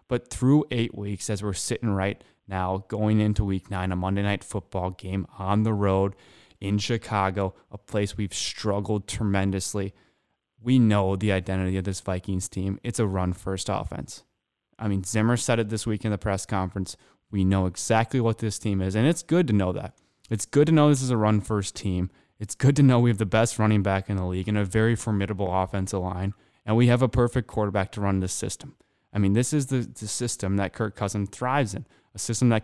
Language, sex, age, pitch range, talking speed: English, male, 20-39, 95-115 Hz, 220 wpm